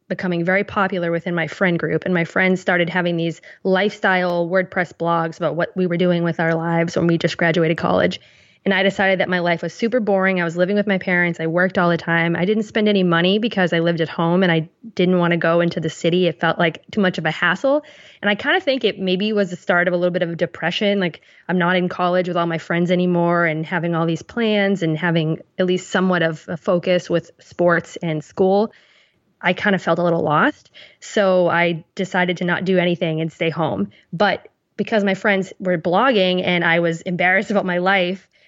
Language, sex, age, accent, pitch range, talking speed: English, female, 20-39, American, 170-195 Hz, 235 wpm